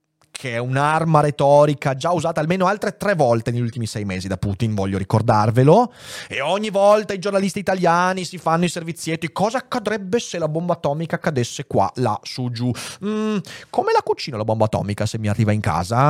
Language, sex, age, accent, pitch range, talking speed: Italian, male, 30-49, native, 105-155 Hz, 190 wpm